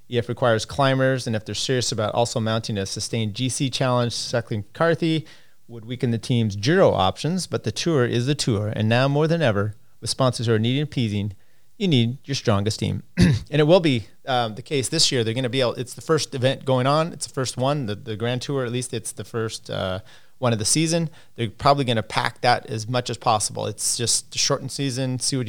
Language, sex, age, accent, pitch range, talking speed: English, male, 30-49, American, 110-135 Hz, 235 wpm